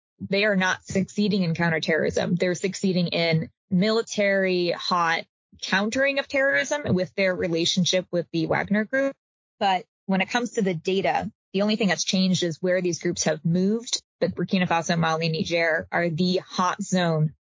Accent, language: American, English